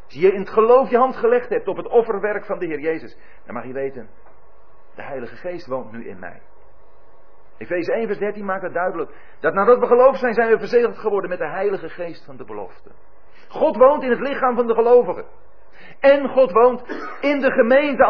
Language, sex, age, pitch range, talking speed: Dutch, male, 40-59, 165-265 Hz, 210 wpm